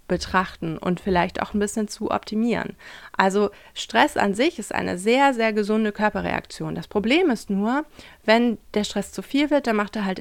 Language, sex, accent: German, female, German